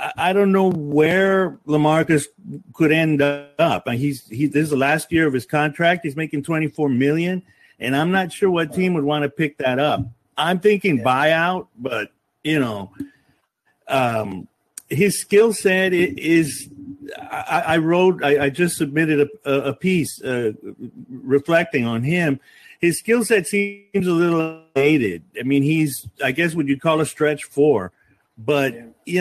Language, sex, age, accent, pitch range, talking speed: English, male, 50-69, American, 140-180 Hz, 170 wpm